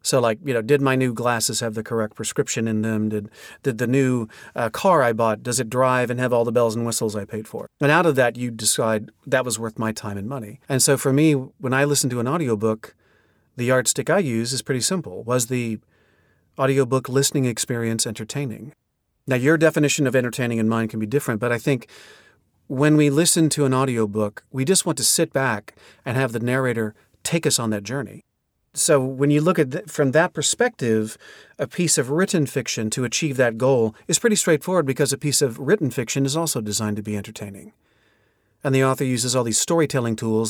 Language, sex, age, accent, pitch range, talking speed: English, male, 40-59, American, 110-140 Hz, 220 wpm